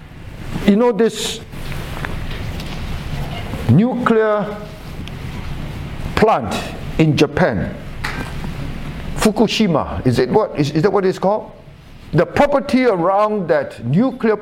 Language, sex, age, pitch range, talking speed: English, male, 60-79, 165-225 Hz, 90 wpm